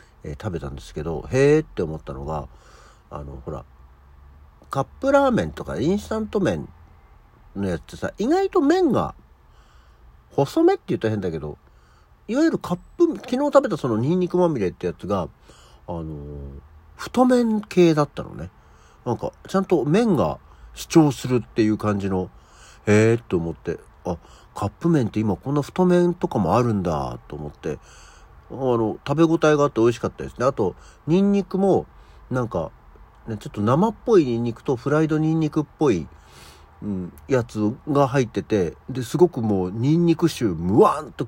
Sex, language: male, Japanese